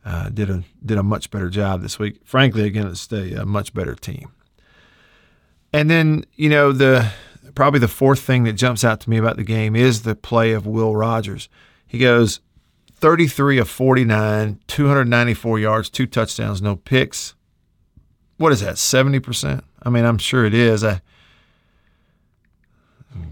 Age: 50-69